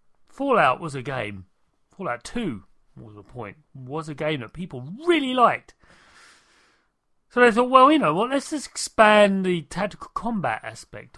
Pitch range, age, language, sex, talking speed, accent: 125-195 Hz, 40-59, English, male, 160 wpm, British